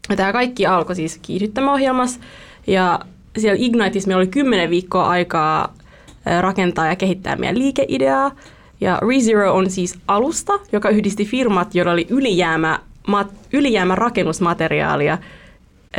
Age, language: 20-39, Finnish